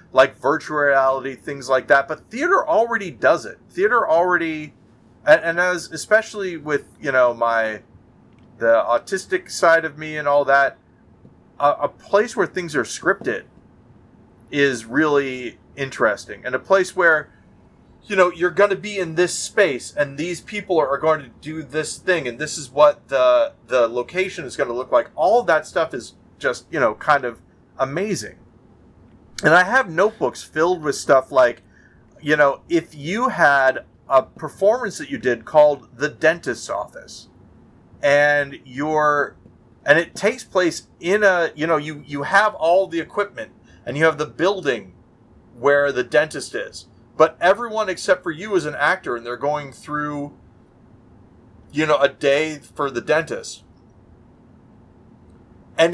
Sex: male